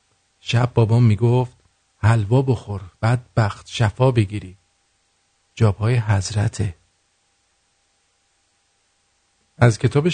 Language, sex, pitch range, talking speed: English, male, 100-130 Hz, 85 wpm